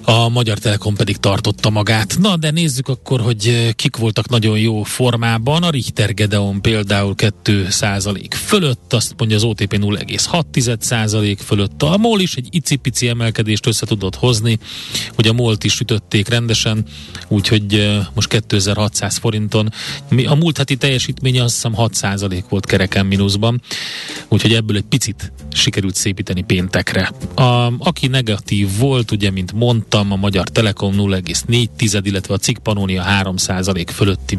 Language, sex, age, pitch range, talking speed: Hungarian, male, 30-49, 100-125 Hz, 140 wpm